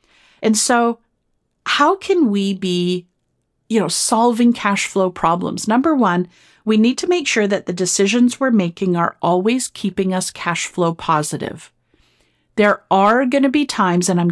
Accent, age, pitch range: American, 40-59, 175-225 Hz